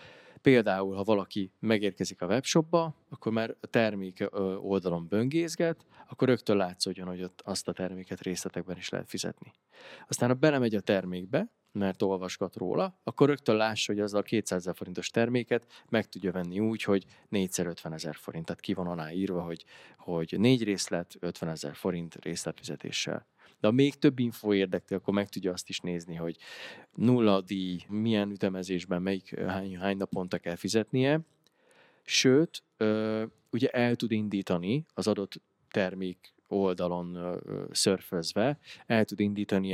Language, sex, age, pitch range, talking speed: Hungarian, male, 20-39, 90-115 Hz, 150 wpm